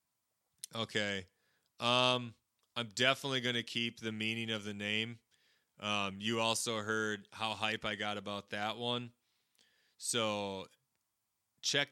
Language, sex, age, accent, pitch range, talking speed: English, male, 30-49, American, 100-120 Hz, 125 wpm